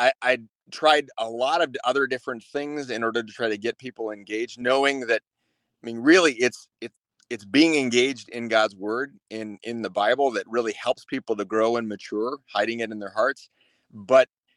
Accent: American